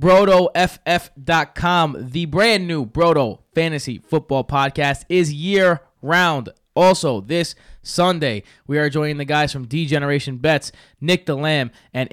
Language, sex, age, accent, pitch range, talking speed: English, male, 20-39, American, 125-160 Hz, 120 wpm